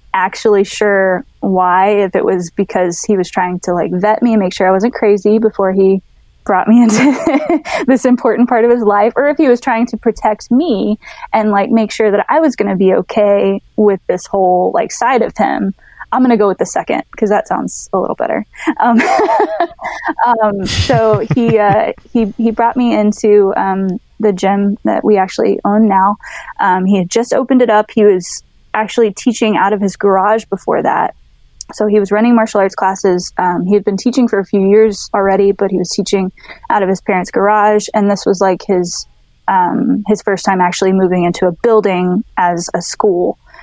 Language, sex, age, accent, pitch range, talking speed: English, female, 10-29, American, 190-225 Hz, 205 wpm